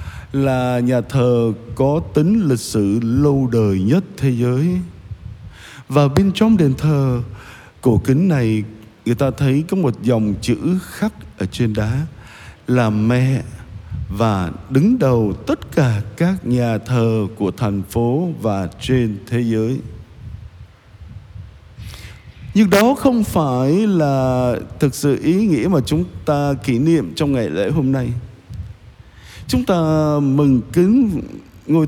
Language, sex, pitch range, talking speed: Vietnamese, male, 110-160 Hz, 135 wpm